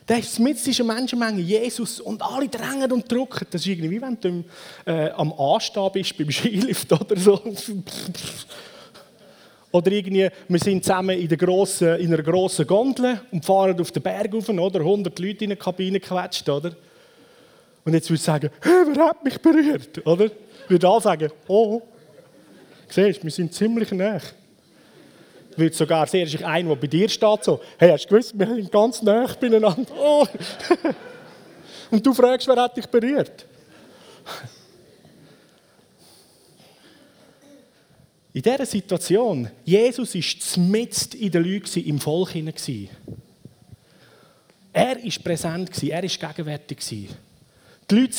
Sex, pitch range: male, 165-225 Hz